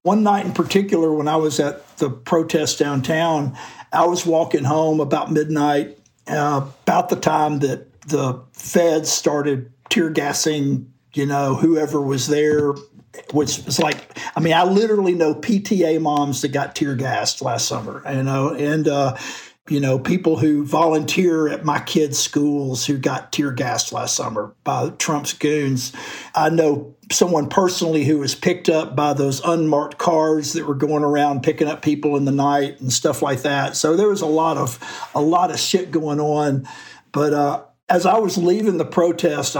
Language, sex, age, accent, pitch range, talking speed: English, male, 50-69, American, 140-160 Hz, 175 wpm